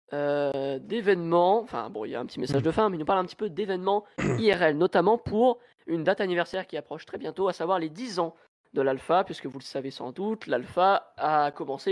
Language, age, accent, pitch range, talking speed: French, 20-39, French, 145-195 Hz, 230 wpm